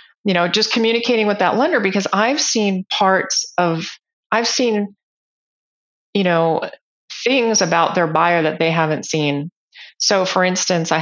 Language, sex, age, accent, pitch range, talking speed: English, female, 30-49, American, 160-195 Hz, 150 wpm